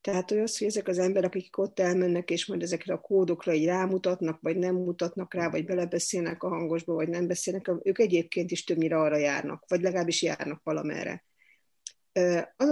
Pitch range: 170-190 Hz